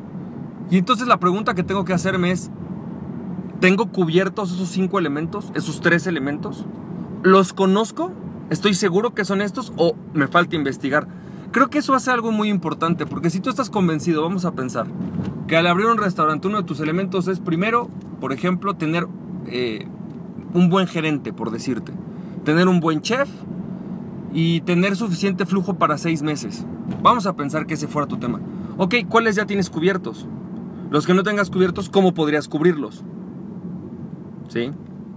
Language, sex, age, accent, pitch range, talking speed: Spanish, male, 40-59, Mexican, 165-200 Hz, 165 wpm